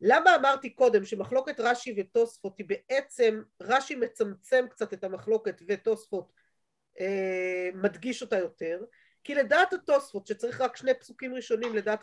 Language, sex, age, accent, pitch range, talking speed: Hebrew, female, 40-59, native, 220-310 Hz, 130 wpm